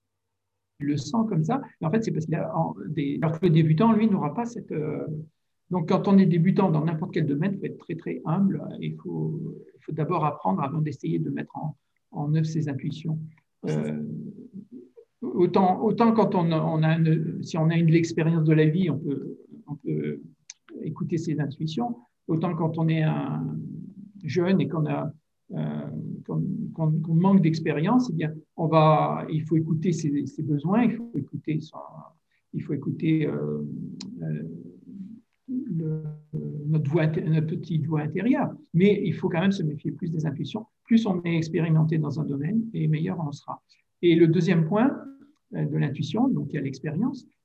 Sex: male